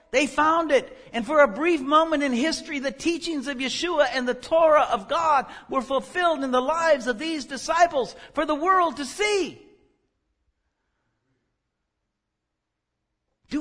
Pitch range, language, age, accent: 250-320 Hz, English, 60-79, American